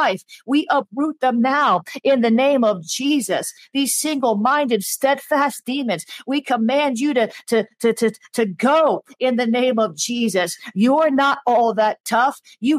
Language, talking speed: English, 155 wpm